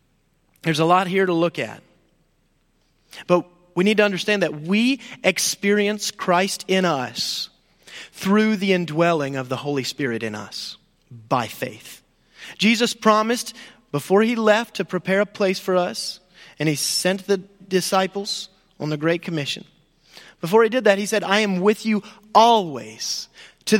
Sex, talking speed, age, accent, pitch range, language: male, 155 wpm, 30-49, American, 155-205 Hz, English